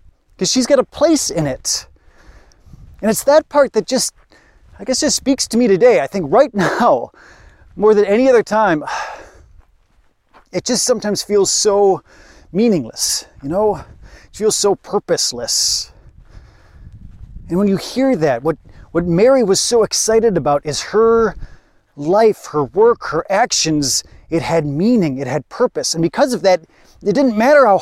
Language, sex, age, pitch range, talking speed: English, male, 30-49, 155-235 Hz, 160 wpm